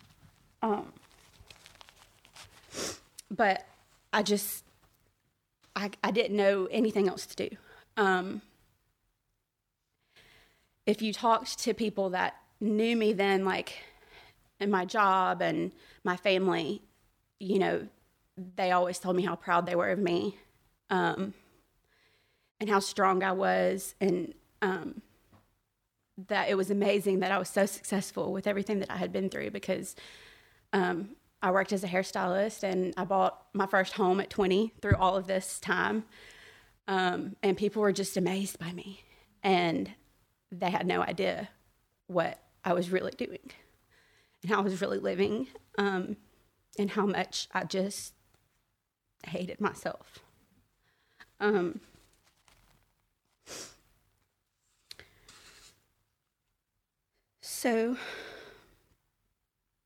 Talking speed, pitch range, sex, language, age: 120 wpm, 180-205 Hz, female, English, 30-49